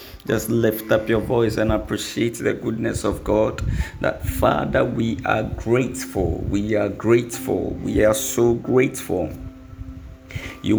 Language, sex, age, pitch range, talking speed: English, male, 50-69, 95-115 Hz, 135 wpm